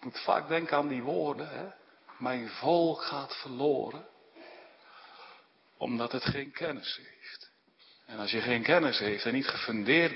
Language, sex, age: Dutch, male, 50-69